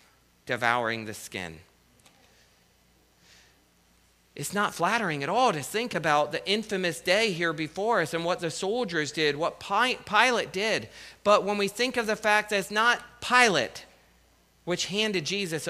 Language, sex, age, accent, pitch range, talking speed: English, male, 40-59, American, 125-205 Hz, 150 wpm